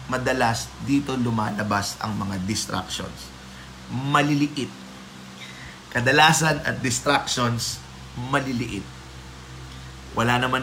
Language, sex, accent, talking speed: Filipino, male, native, 75 wpm